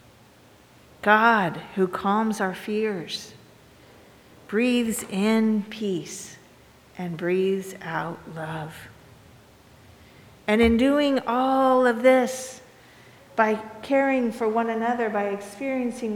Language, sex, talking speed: English, female, 95 wpm